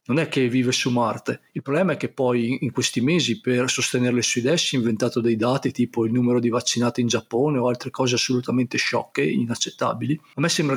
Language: Italian